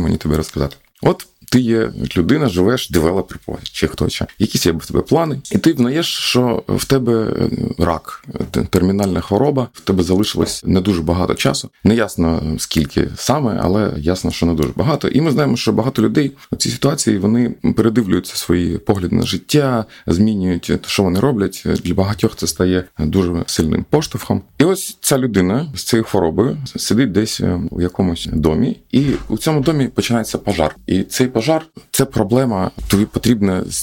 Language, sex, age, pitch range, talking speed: Ukrainian, male, 30-49, 90-125 Hz, 170 wpm